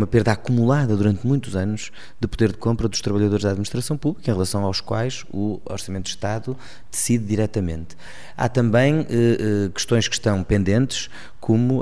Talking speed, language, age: 170 wpm, Portuguese, 20-39